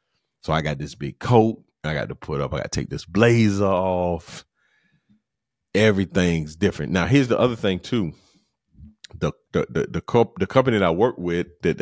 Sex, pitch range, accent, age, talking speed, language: male, 80-100 Hz, American, 30-49, 190 wpm, English